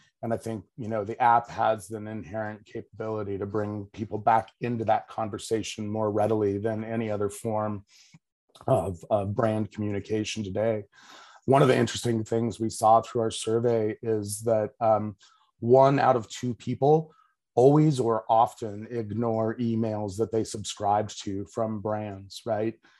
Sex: male